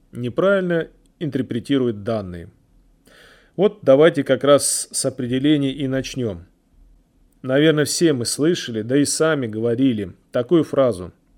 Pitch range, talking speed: 120-155 Hz, 110 wpm